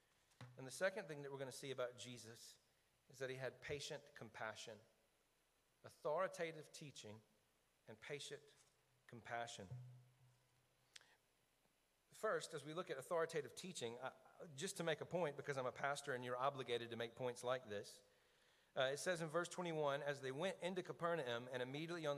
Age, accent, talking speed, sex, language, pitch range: 40-59, American, 160 wpm, male, English, 130-165 Hz